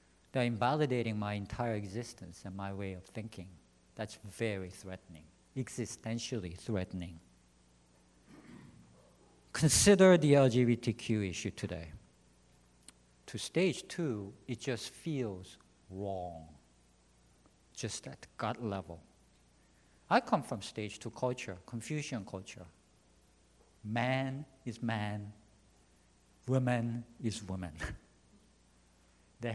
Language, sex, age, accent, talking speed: English, male, 50-69, Japanese, 95 wpm